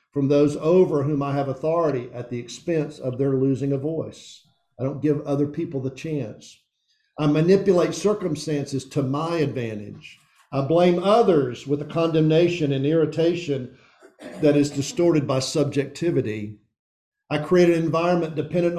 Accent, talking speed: American, 145 wpm